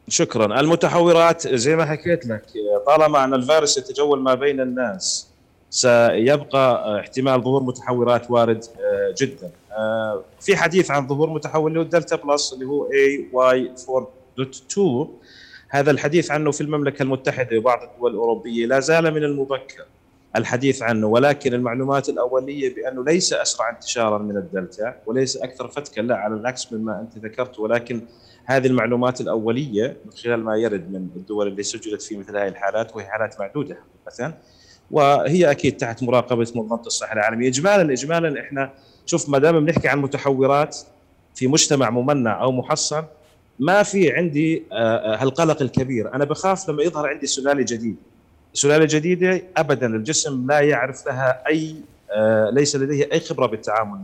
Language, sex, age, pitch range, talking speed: Arabic, male, 30-49, 115-155 Hz, 145 wpm